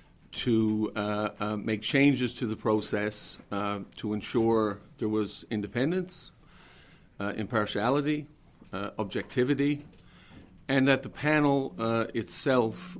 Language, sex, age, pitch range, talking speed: English, male, 50-69, 105-120 Hz, 110 wpm